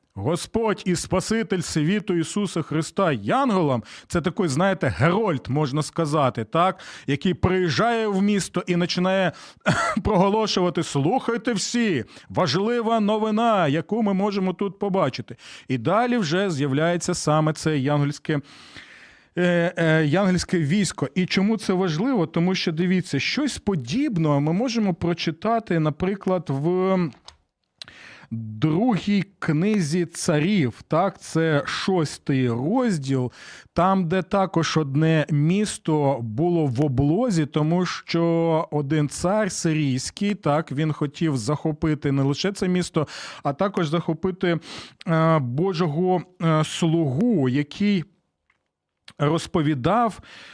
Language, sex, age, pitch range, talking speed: Ukrainian, male, 40-59, 155-195 Hz, 110 wpm